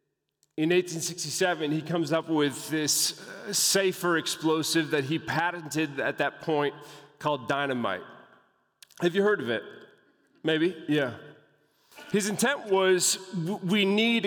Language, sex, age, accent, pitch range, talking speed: English, male, 30-49, American, 155-185 Hz, 120 wpm